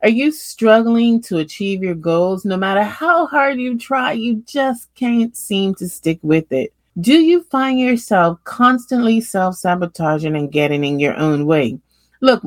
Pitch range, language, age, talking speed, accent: 180-260 Hz, English, 30-49, 165 wpm, American